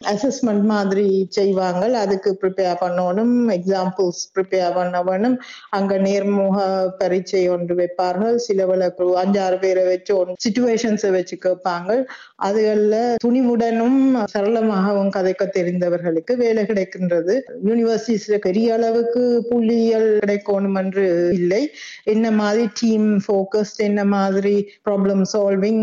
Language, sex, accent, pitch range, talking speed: Tamil, female, native, 185-225 Hz, 60 wpm